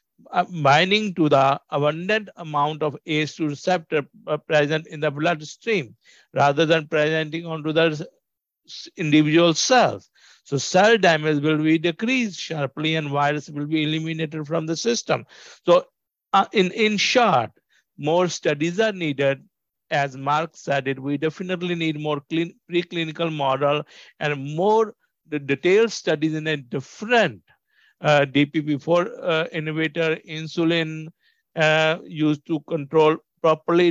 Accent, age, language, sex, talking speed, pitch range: Indian, 60-79, English, male, 125 wpm, 145-170 Hz